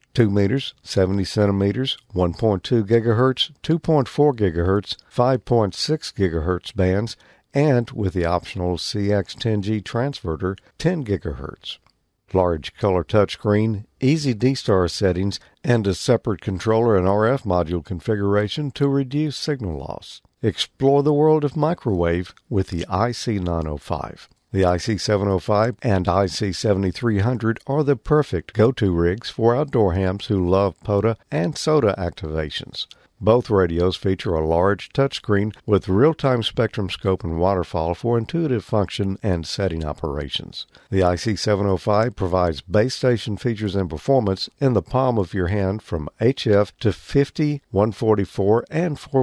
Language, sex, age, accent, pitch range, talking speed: English, male, 50-69, American, 95-125 Hz, 120 wpm